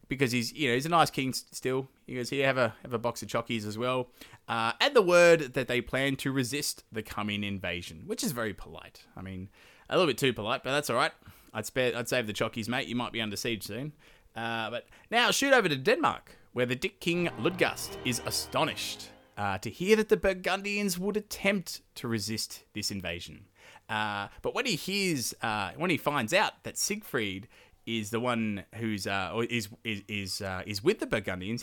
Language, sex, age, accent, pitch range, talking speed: English, male, 20-39, Australian, 105-145 Hz, 215 wpm